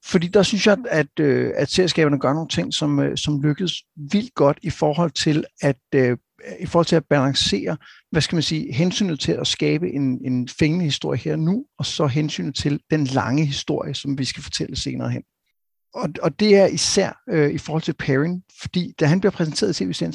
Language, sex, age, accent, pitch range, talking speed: Danish, male, 60-79, native, 145-175 Hz, 190 wpm